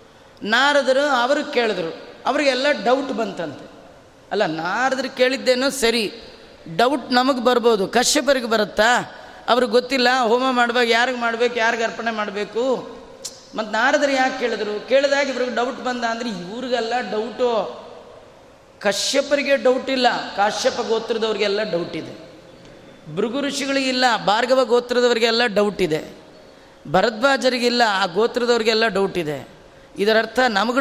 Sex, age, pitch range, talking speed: female, 20-39, 220-260 Hz, 105 wpm